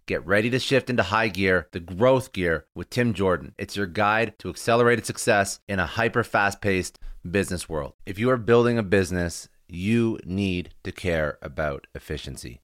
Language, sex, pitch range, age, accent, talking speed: English, male, 80-105 Hz, 30-49, American, 170 wpm